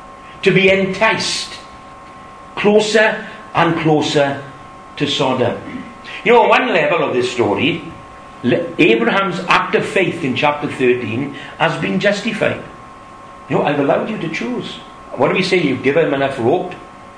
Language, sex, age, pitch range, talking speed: English, male, 60-79, 120-185 Hz, 145 wpm